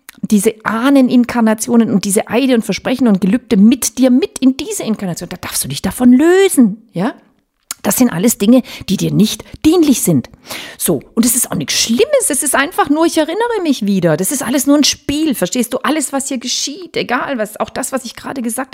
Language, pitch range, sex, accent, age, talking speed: German, 175-265 Hz, female, German, 40-59, 210 wpm